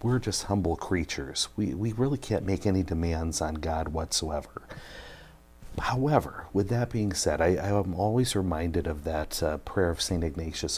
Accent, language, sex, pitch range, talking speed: American, English, male, 80-105 Hz, 175 wpm